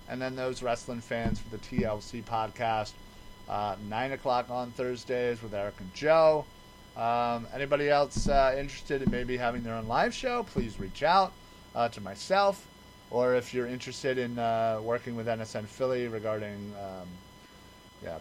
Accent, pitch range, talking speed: American, 110-145 Hz, 160 wpm